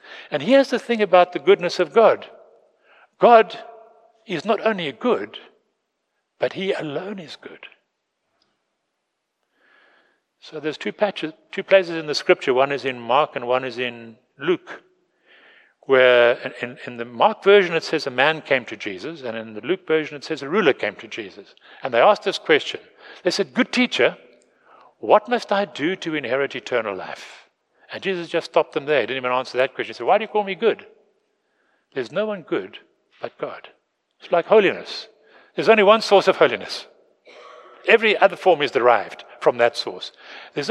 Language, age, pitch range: English, 60-79, 155-230 Hz